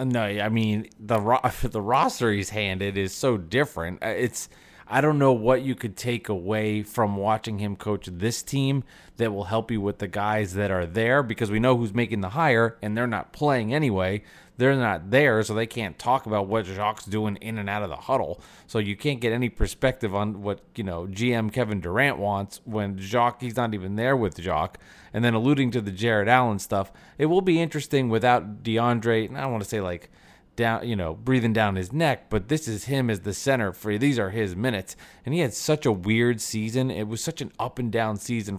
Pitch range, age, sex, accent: 105-125 Hz, 30-49, male, American